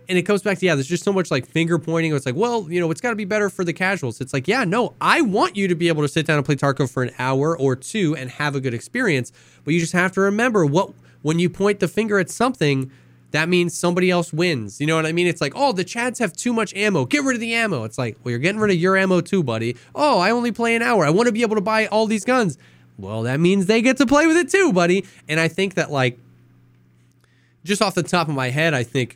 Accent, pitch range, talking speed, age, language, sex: American, 125-185 Hz, 290 wpm, 20-39, English, male